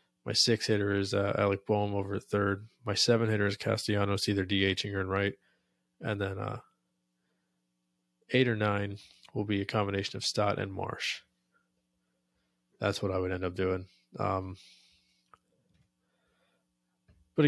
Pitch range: 95-110 Hz